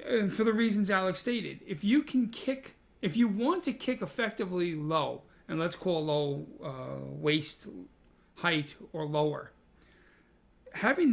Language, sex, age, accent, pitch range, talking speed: English, male, 40-59, American, 165-215 Hz, 145 wpm